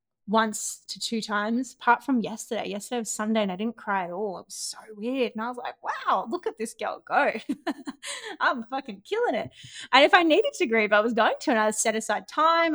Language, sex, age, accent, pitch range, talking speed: English, female, 20-39, Australian, 195-235 Hz, 230 wpm